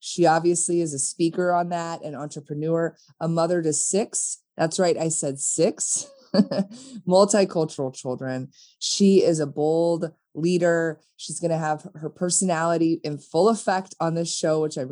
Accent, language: American, English